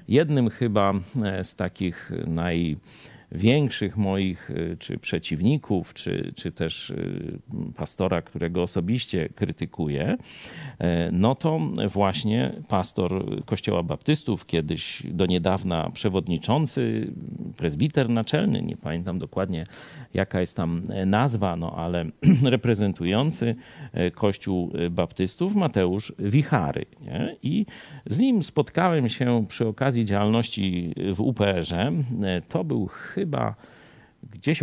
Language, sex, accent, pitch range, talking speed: Polish, male, native, 90-125 Hz, 100 wpm